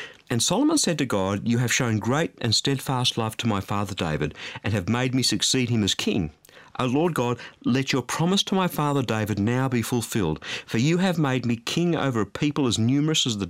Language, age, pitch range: English, 50-69, 105-150 Hz